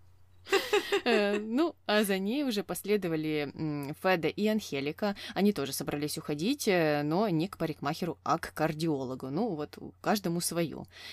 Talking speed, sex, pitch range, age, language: 130 wpm, female, 145-195 Hz, 20-39, Russian